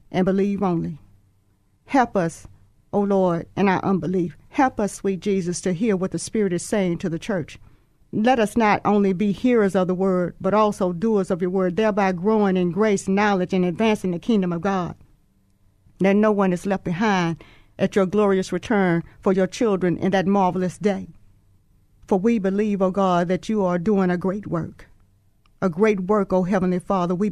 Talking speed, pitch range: 190 wpm, 175-200 Hz